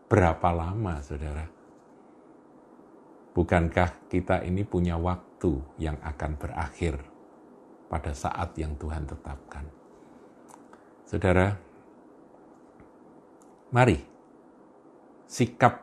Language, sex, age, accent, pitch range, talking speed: Indonesian, male, 50-69, native, 80-95 Hz, 70 wpm